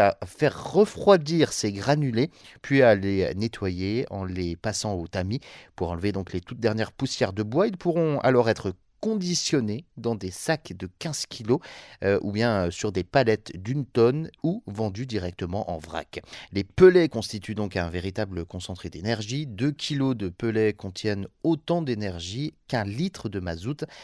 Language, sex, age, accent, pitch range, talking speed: French, male, 30-49, French, 95-135 Hz, 165 wpm